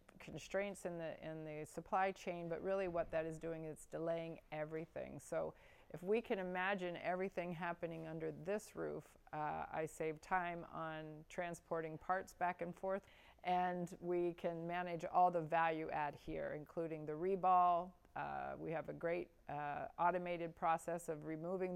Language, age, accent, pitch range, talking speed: English, 40-59, American, 160-180 Hz, 165 wpm